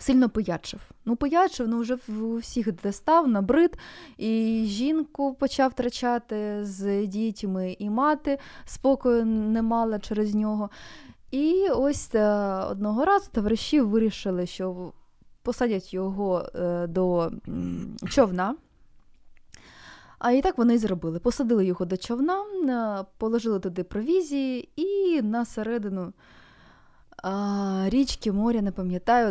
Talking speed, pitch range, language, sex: 115 wpm, 190-255 Hz, Ukrainian, female